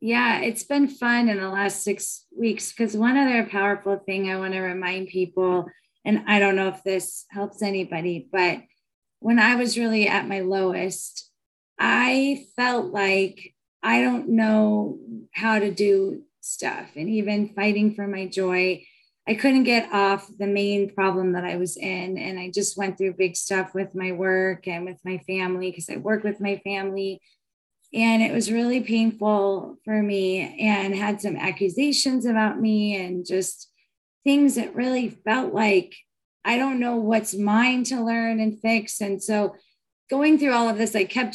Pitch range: 190-225 Hz